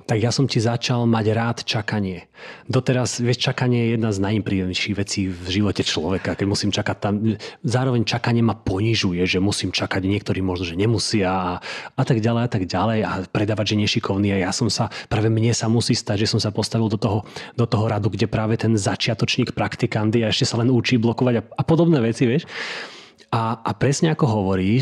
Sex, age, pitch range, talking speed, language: male, 30-49, 100-120 Hz, 205 wpm, Slovak